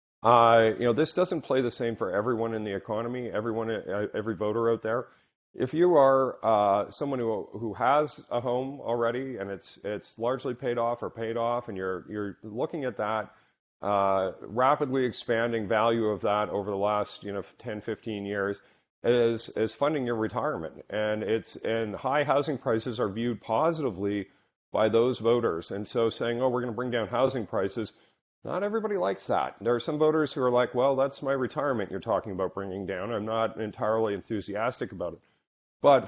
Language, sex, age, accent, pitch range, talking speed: English, male, 40-59, American, 110-130 Hz, 190 wpm